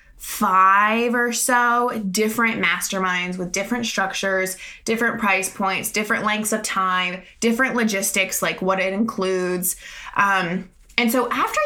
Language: English